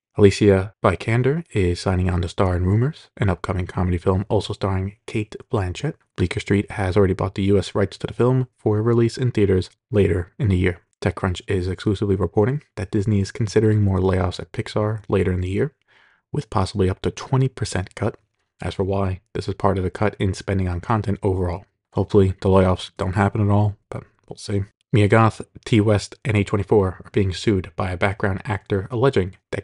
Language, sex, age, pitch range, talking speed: English, male, 20-39, 95-105 Hz, 200 wpm